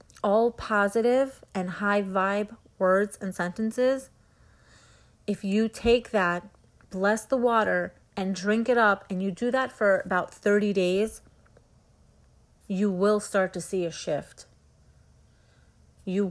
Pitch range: 180-210 Hz